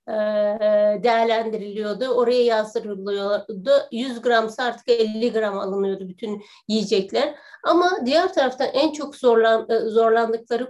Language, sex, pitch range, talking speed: Turkish, female, 215-260 Hz, 95 wpm